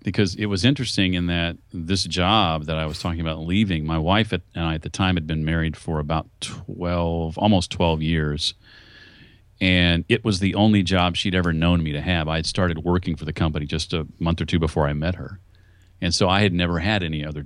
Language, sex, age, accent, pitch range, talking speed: English, male, 40-59, American, 85-105 Hz, 230 wpm